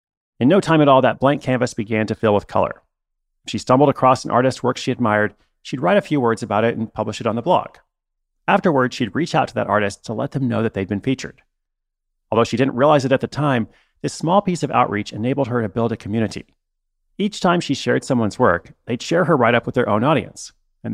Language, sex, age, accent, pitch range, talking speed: English, male, 40-59, American, 110-145 Hz, 240 wpm